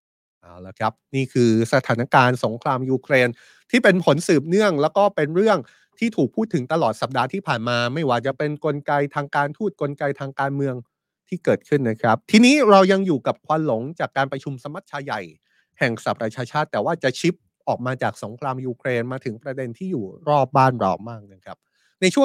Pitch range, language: 115-150 Hz, Thai